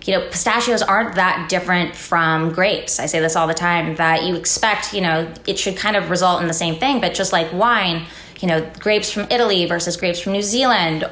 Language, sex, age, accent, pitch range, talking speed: English, female, 20-39, American, 170-200 Hz, 225 wpm